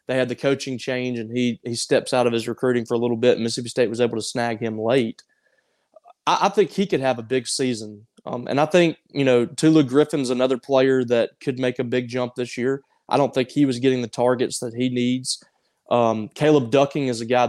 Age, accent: 20-39, American